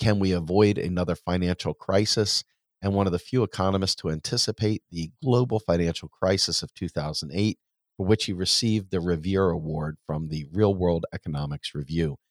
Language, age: English, 40-59